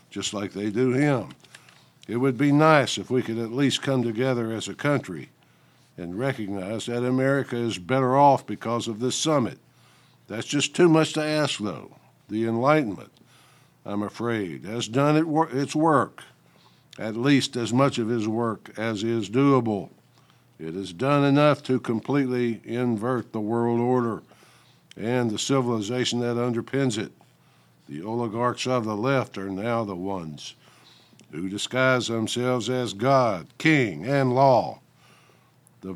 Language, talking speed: English, 150 wpm